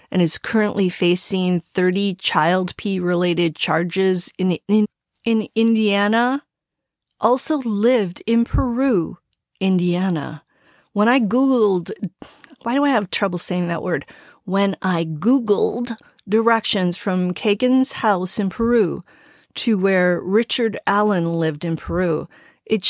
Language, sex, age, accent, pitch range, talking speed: English, female, 40-59, American, 180-215 Hz, 120 wpm